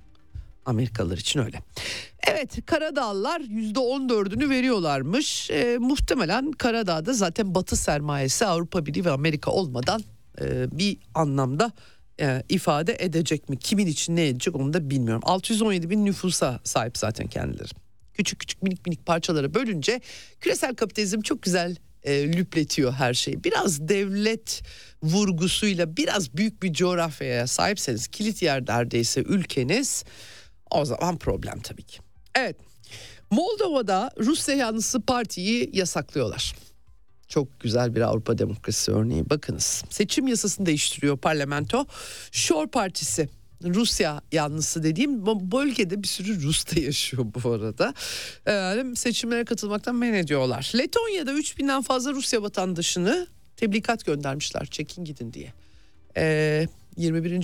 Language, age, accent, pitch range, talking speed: Turkish, 50-69, native, 140-225 Hz, 120 wpm